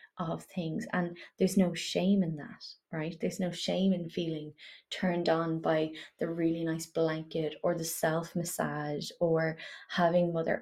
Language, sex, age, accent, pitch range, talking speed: English, female, 20-39, Irish, 165-190 Hz, 160 wpm